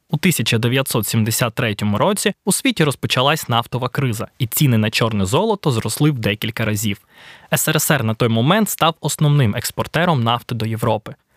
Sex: male